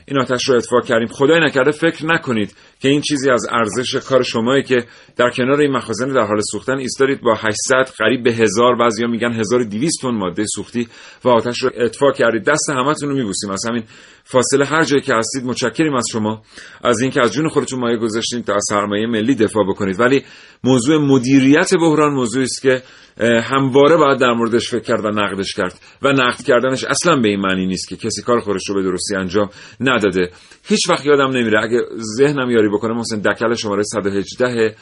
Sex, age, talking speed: male, 40-59, 195 wpm